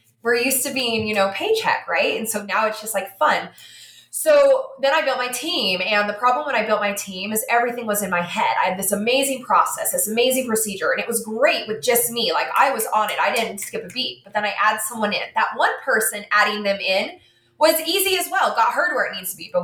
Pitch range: 180-240 Hz